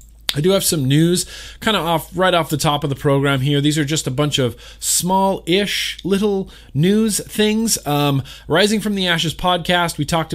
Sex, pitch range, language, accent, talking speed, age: male, 130-180 Hz, English, American, 195 wpm, 20-39